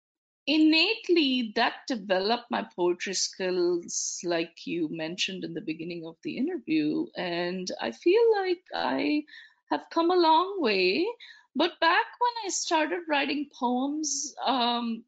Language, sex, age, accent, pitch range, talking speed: English, female, 20-39, Indian, 235-345 Hz, 130 wpm